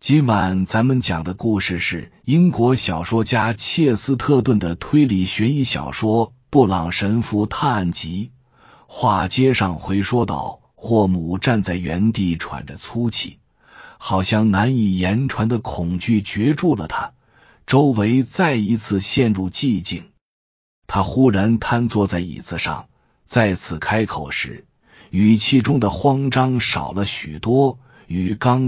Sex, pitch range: male, 90-120 Hz